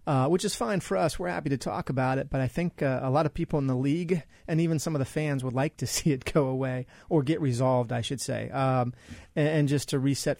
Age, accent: 30-49, American